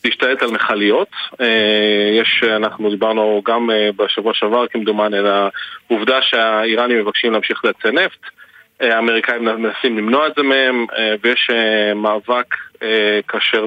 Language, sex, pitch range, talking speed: Hebrew, male, 105-125 Hz, 115 wpm